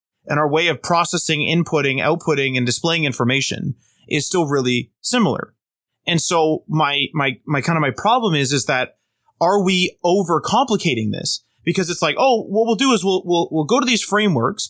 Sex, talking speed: male, 185 wpm